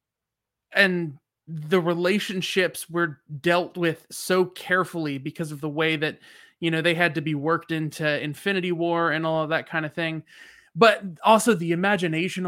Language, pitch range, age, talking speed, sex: English, 160-195 Hz, 20-39, 165 wpm, male